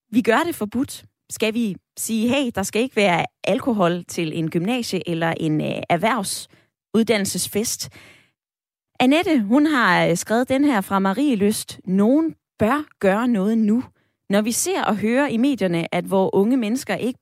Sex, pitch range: female, 180-250 Hz